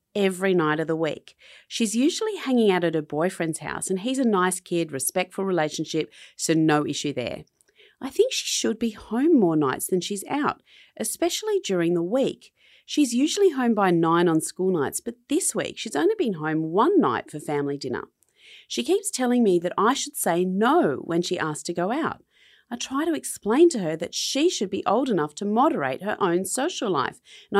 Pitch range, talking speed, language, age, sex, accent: 160-255 Hz, 200 wpm, English, 40-59, female, Australian